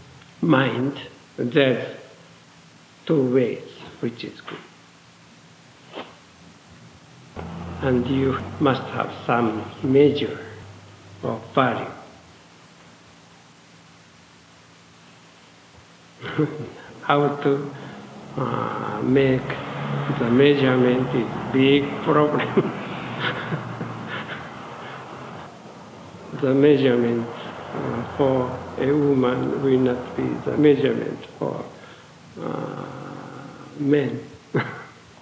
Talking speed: 65 wpm